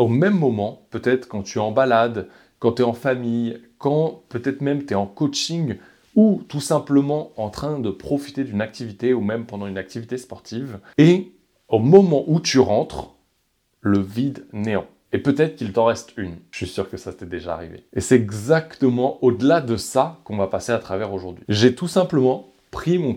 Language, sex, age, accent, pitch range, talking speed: French, male, 20-39, French, 110-140 Hz, 195 wpm